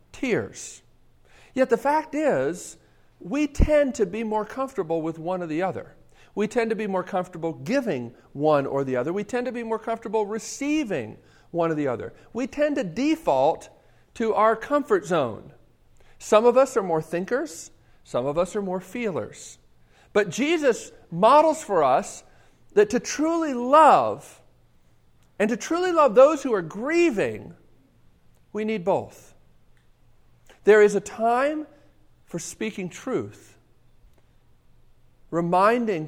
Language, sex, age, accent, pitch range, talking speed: English, male, 50-69, American, 155-250 Hz, 145 wpm